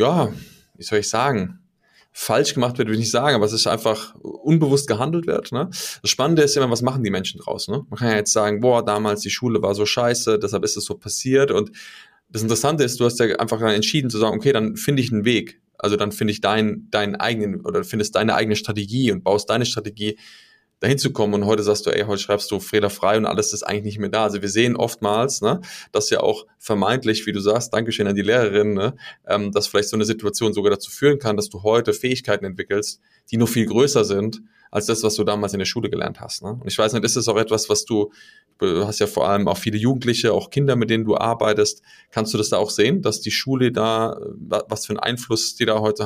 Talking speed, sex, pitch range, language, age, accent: 245 wpm, male, 105-125 Hz, German, 20-39, German